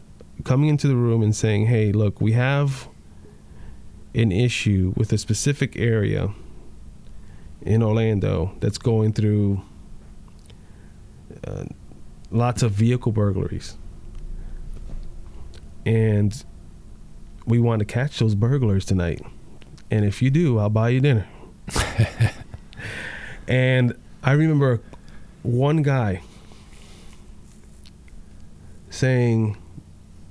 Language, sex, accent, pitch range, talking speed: English, male, American, 85-125 Hz, 95 wpm